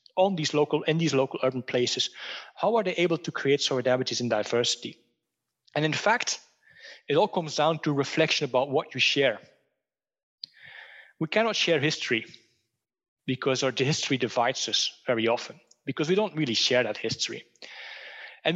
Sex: male